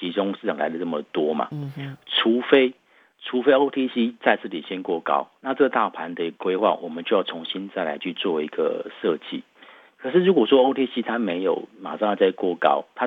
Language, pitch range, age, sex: Chinese, 95-130 Hz, 50-69, male